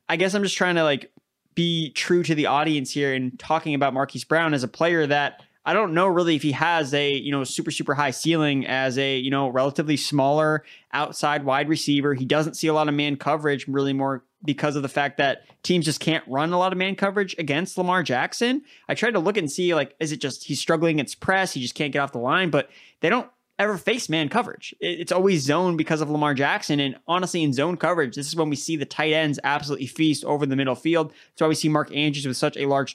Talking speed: 250 wpm